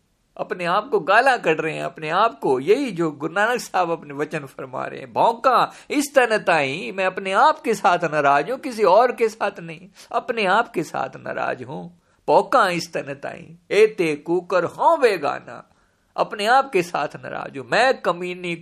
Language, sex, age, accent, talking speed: Hindi, male, 50-69, native, 185 wpm